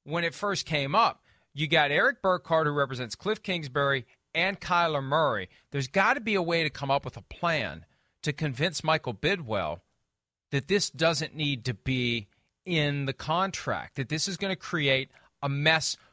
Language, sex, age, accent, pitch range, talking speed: English, male, 40-59, American, 125-165 Hz, 180 wpm